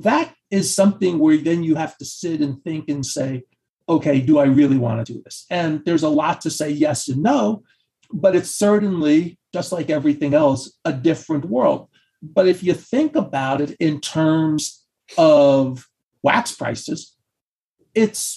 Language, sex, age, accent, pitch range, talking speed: English, male, 40-59, American, 145-195 Hz, 170 wpm